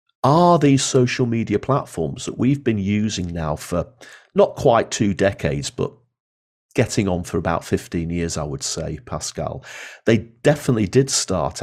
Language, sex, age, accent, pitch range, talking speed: English, male, 40-59, British, 85-115 Hz, 155 wpm